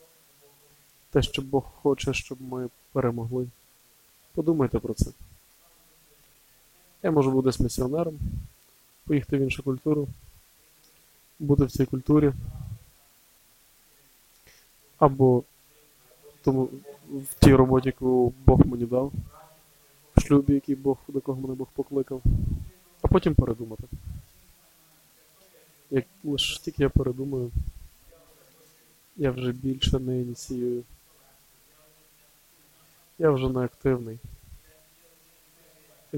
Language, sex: Ukrainian, male